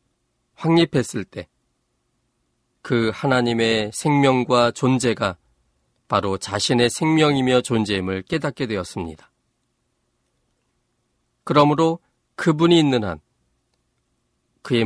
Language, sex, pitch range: Korean, male, 110-145 Hz